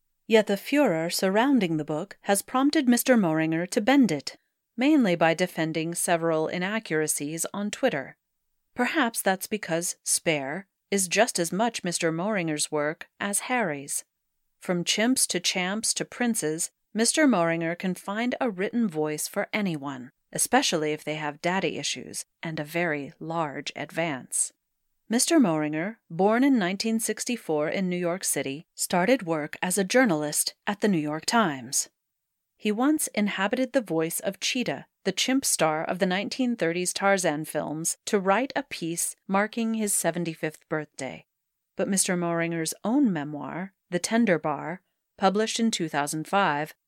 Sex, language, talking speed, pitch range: female, English, 145 wpm, 160-225 Hz